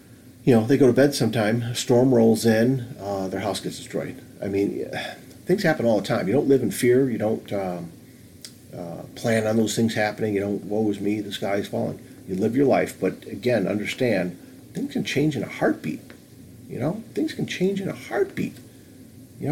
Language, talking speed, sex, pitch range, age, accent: English, 210 wpm, male, 105-145 Hz, 40-59, American